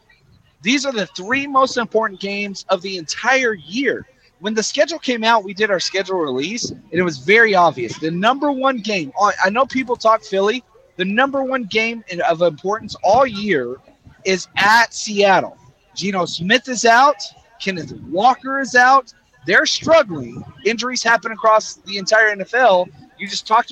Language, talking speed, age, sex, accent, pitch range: English, 165 wpm, 30-49, male, American, 185-250 Hz